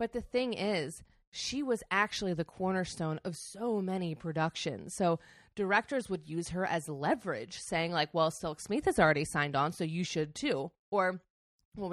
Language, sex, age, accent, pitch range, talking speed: English, female, 30-49, American, 160-215 Hz, 175 wpm